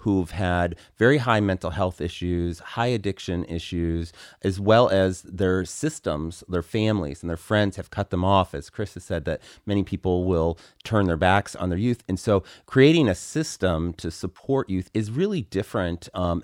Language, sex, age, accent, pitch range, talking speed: English, male, 30-49, American, 85-100 Hz, 185 wpm